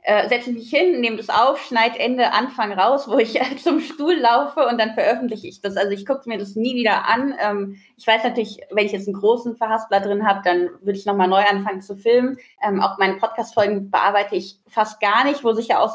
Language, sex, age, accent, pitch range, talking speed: German, female, 20-39, German, 195-230 Hz, 220 wpm